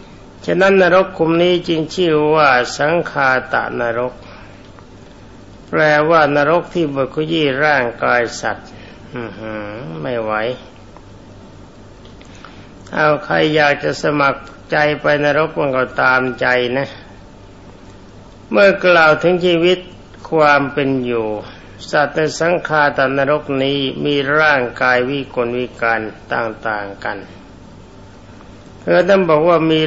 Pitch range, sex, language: 100-150 Hz, male, Thai